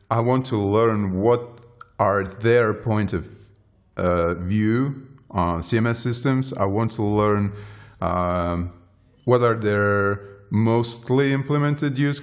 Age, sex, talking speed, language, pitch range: 30-49, male, 125 wpm, English, 100-130 Hz